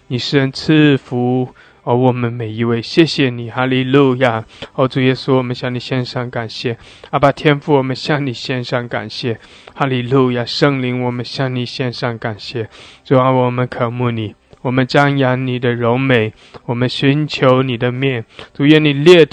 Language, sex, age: English, male, 20-39